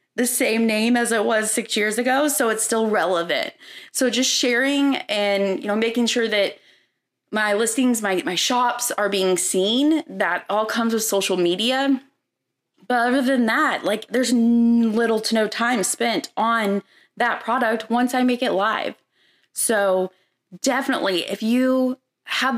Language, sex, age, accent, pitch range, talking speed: English, female, 20-39, American, 210-260 Hz, 155 wpm